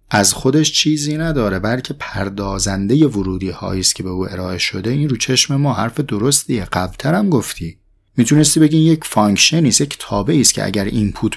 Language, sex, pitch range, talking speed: Persian, male, 100-145 Hz, 175 wpm